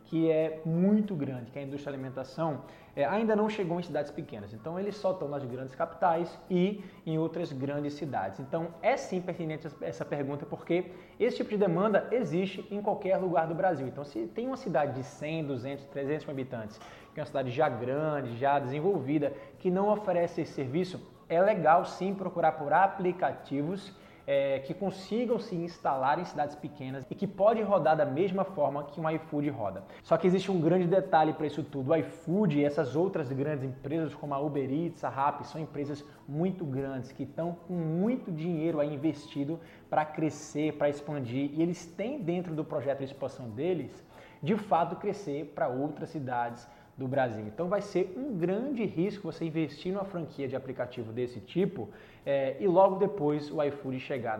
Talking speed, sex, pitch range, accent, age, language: 185 wpm, male, 140-180 Hz, Brazilian, 20-39, Portuguese